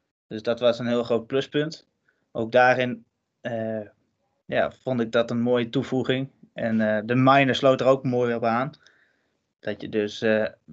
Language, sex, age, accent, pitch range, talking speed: Dutch, male, 20-39, Dutch, 115-130 Hz, 170 wpm